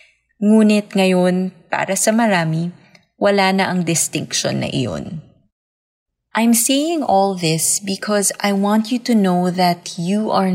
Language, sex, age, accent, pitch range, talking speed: English, female, 20-39, Filipino, 155-200 Hz, 135 wpm